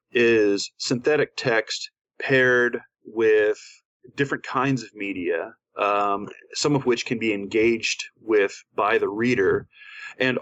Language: English